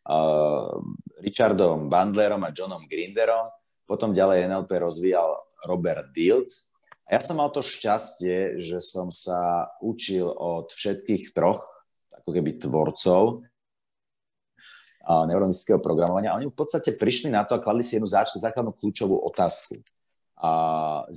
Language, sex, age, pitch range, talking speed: Slovak, male, 30-49, 90-145 Hz, 125 wpm